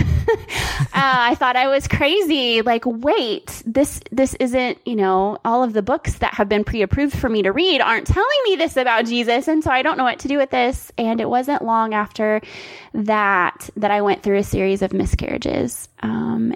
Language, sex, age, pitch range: English, female, 20-39, 200-245 Hz